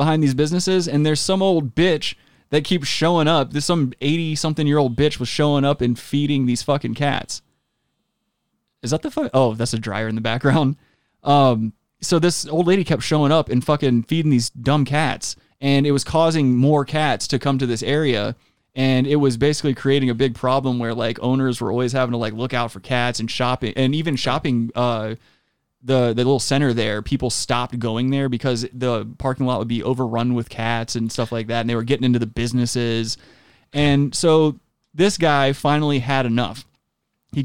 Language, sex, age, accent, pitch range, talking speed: English, male, 20-39, American, 120-145 Hz, 200 wpm